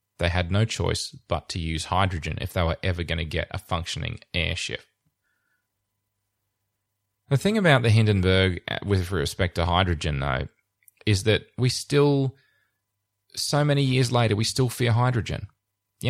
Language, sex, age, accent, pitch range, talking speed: English, male, 20-39, Australian, 90-120 Hz, 155 wpm